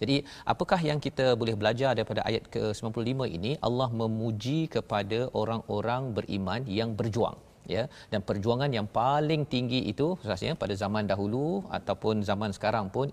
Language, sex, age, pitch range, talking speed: Malayalam, male, 40-59, 105-130 Hz, 150 wpm